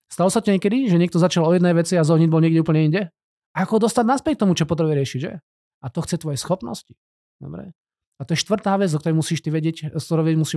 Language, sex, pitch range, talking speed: Slovak, male, 150-185 Hz, 235 wpm